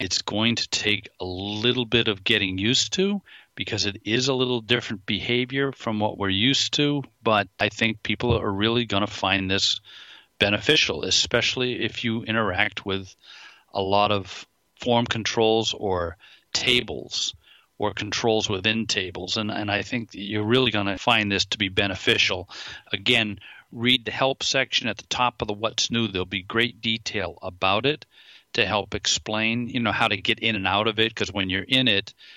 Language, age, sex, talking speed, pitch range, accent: English, 40-59, male, 185 wpm, 100-120 Hz, American